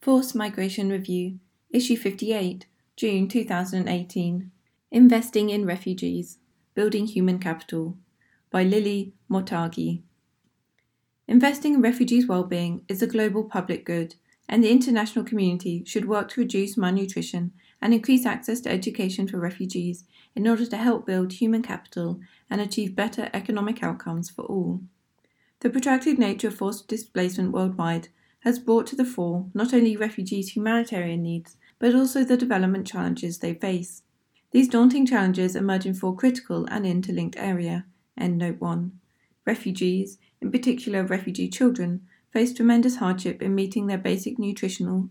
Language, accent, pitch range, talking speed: English, British, 185-230 Hz, 135 wpm